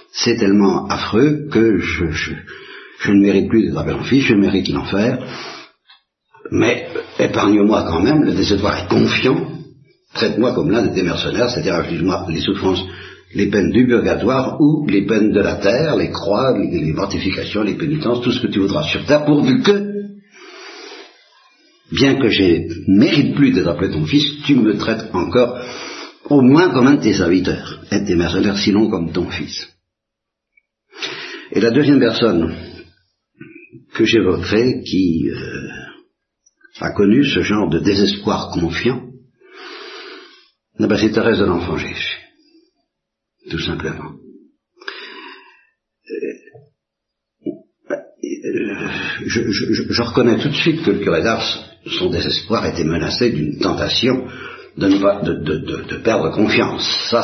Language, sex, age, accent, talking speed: Italian, male, 60-79, French, 150 wpm